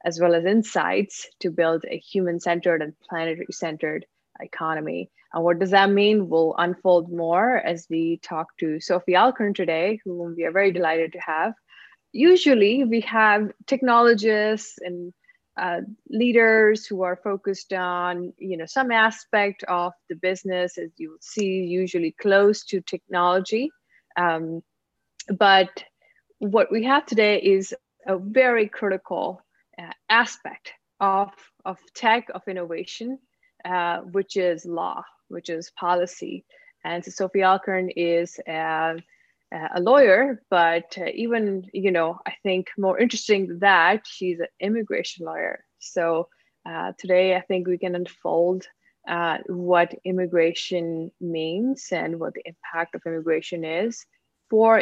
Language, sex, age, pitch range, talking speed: English, female, 20-39, 170-215 Hz, 135 wpm